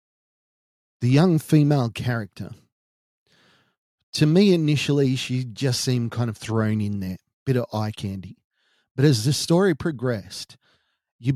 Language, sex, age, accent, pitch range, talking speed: English, male, 40-59, Australian, 115-145 Hz, 130 wpm